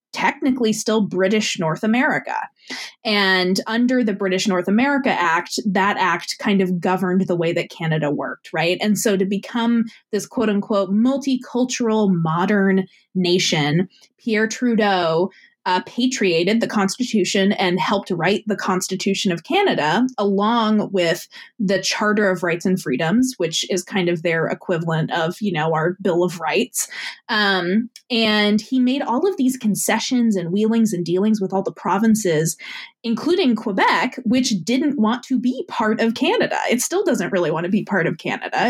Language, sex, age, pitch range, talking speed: English, female, 20-39, 190-245 Hz, 160 wpm